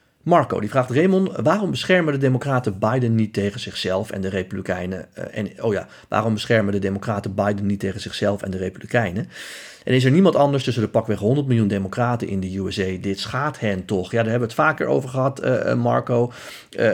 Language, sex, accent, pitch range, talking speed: Dutch, male, Dutch, 100-130 Hz, 210 wpm